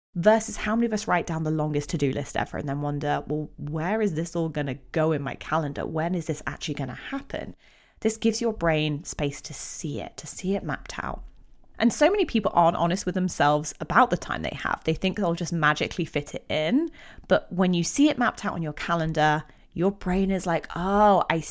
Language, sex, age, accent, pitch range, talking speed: English, female, 30-49, British, 155-225 Hz, 225 wpm